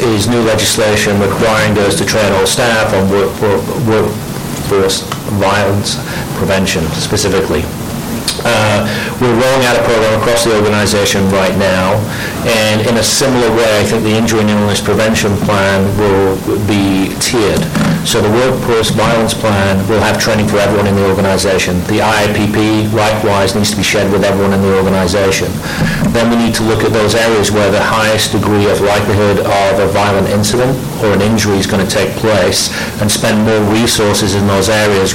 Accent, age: British, 50-69